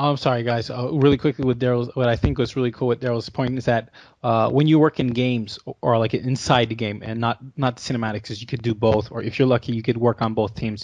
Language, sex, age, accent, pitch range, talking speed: English, male, 20-39, American, 115-130 Hz, 265 wpm